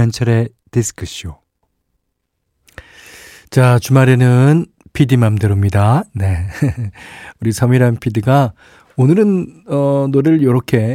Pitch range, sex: 100-130 Hz, male